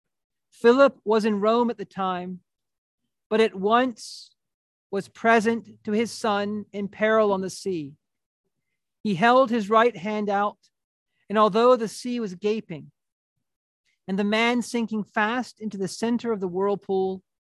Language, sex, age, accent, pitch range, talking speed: English, male, 40-59, American, 185-215 Hz, 145 wpm